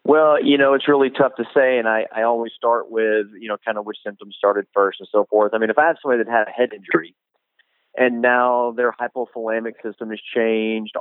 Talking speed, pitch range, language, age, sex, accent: 235 wpm, 105-125 Hz, English, 30-49, male, American